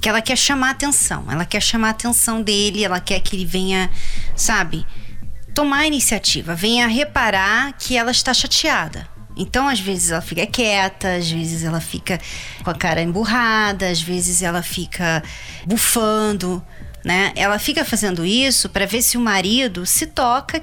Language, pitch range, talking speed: Portuguese, 190-270 Hz, 170 wpm